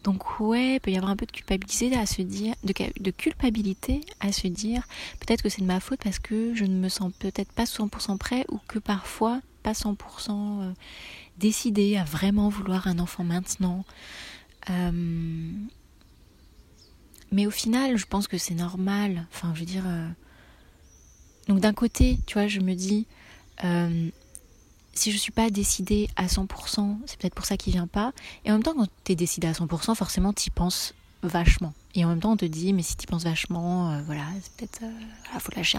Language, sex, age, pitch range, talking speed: French, female, 30-49, 175-215 Hz, 205 wpm